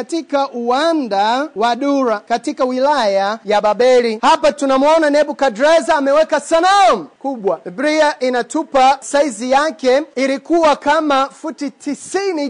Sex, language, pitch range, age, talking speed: male, Swahili, 235-310 Hz, 30-49, 105 wpm